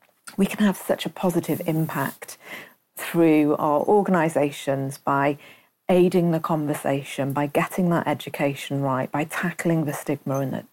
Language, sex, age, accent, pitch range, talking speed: English, female, 40-59, British, 150-195 Hz, 130 wpm